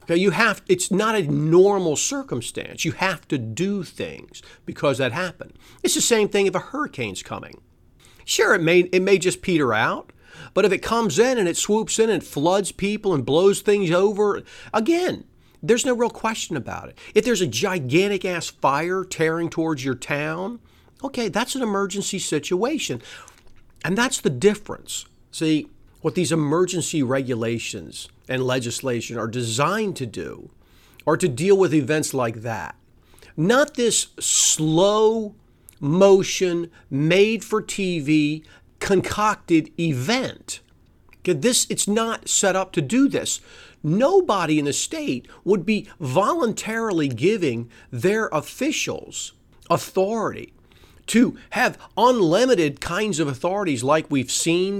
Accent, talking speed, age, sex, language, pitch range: American, 140 wpm, 40-59, male, English, 155-215 Hz